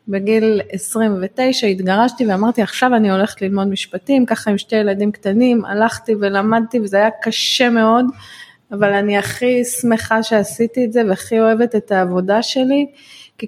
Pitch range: 210-255 Hz